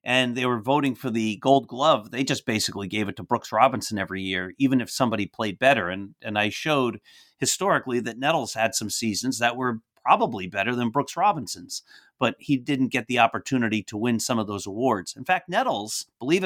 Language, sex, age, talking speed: English, male, 30-49, 205 wpm